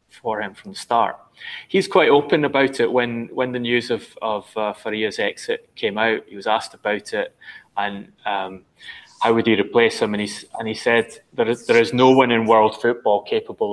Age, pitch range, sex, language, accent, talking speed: 20-39, 100-125 Hz, male, English, British, 210 wpm